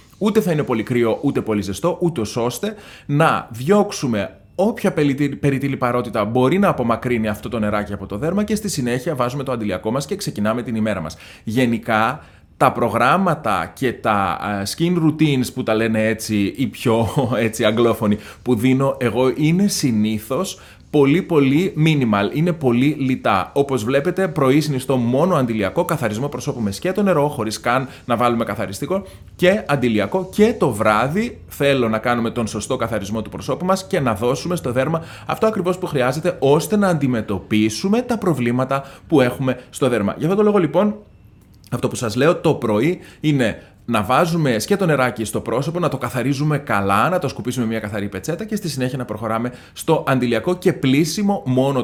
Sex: male